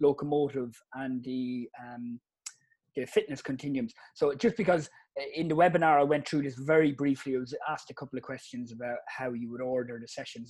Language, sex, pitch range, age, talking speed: English, male, 130-160 Hz, 30-49, 190 wpm